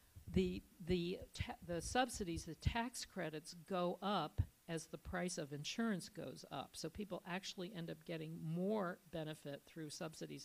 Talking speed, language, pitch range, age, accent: 155 wpm, English, 160-195 Hz, 50-69, American